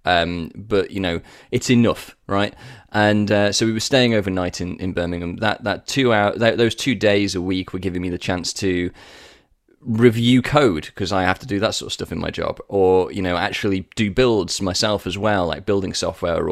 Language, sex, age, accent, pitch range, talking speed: English, male, 20-39, British, 95-120 Hz, 215 wpm